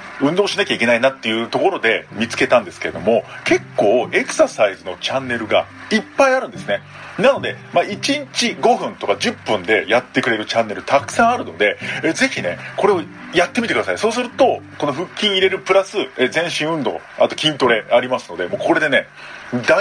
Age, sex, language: 40-59, male, Japanese